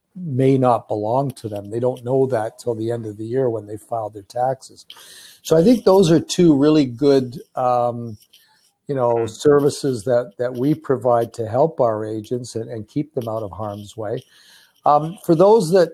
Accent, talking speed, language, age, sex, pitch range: American, 195 wpm, English, 60-79, male, 115-145 Hz